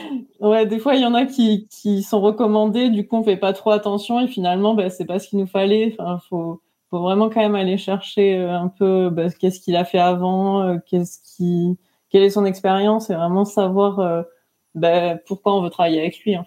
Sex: female